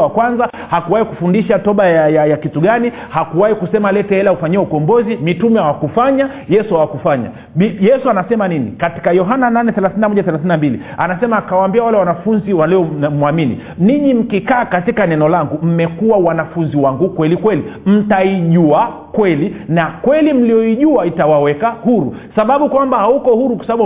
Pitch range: 150-220 Hz